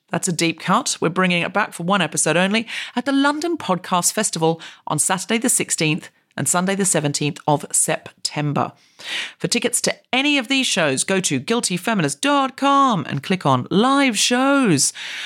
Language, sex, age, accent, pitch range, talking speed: English, female, 40-59, British, 160-235 Hz, 165 wpm